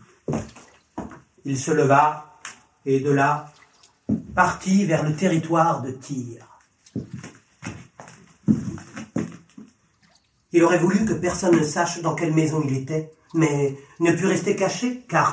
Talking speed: 115 wpm